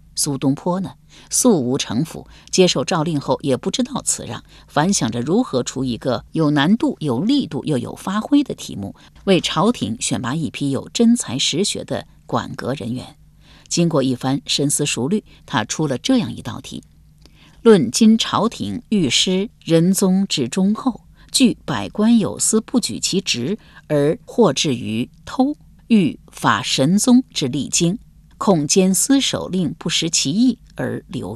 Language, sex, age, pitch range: Chinese, female, 50-69, 145-225 Hz